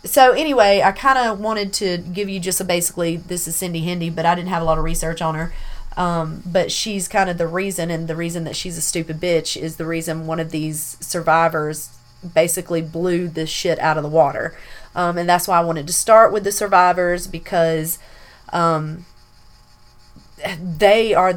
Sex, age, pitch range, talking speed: female, 30-49, 160-195 Hz, 195 wpm